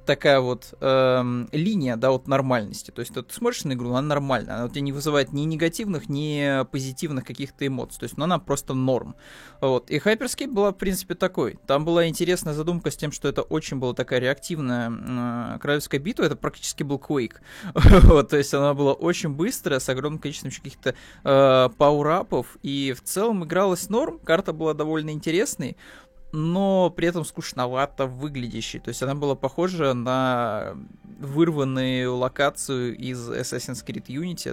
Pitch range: 125-160 Hz